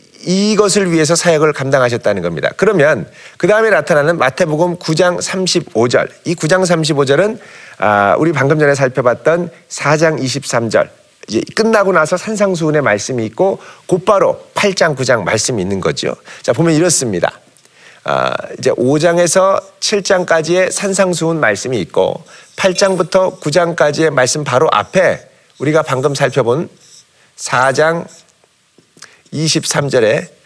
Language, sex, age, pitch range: Korean, male, 40-59, 150-200 Hz